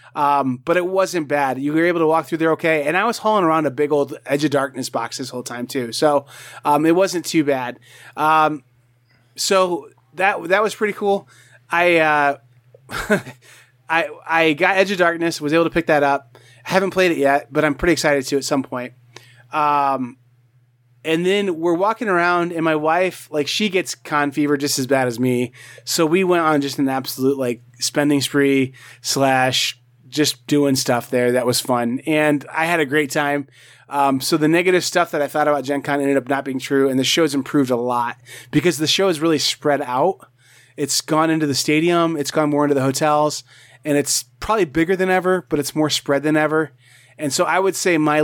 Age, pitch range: 30-49, 130-165 Hz